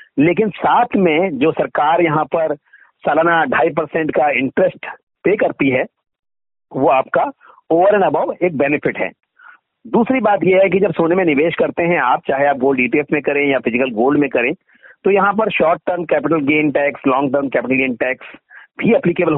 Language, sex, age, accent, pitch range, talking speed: Hindi, male, 50-69, native, 140-185 Hz, 190 wpm